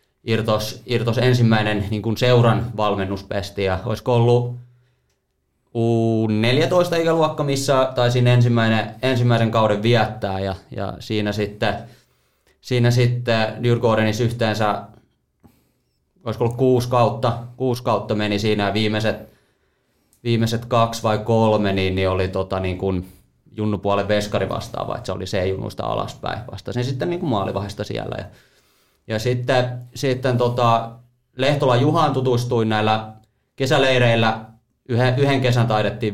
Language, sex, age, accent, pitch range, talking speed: Finnish, male, 30-49, native, 105-125 Hz, 120 wpm